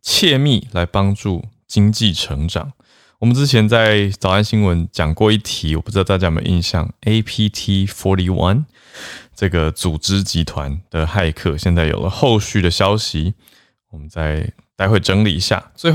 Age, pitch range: 20-39, 85-110 Hz